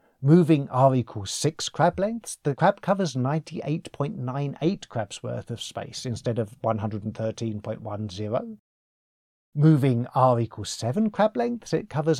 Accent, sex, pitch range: British, male, 115-165 Hz